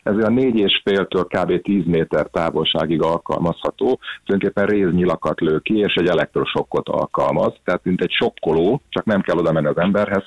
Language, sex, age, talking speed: Hungarian, male, 30-49, 160 wpm